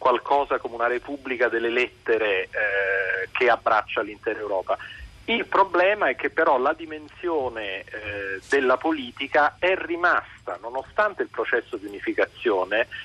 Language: Italian